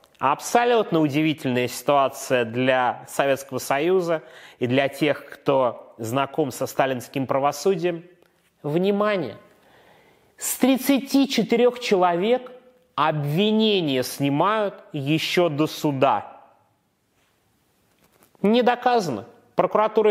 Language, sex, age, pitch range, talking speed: Russian, male, 30-49, 140-200 Hz, 80 wpm